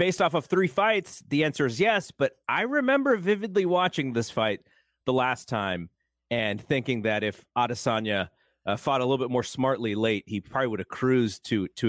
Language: English